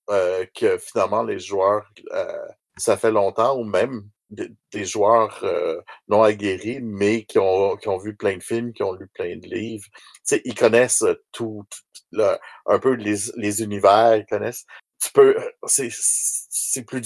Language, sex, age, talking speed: French, male, 60-79, 175 wpm